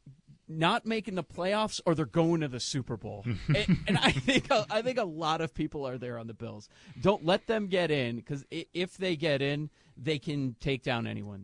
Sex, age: male, 40-59